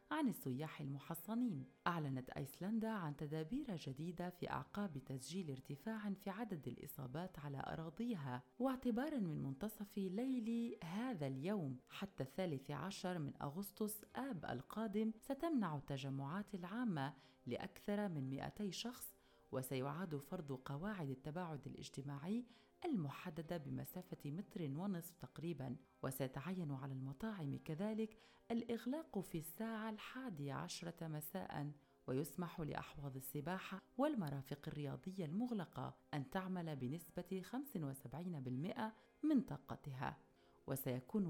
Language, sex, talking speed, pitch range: Arabic, female, 100 wpm, 140-210 Hz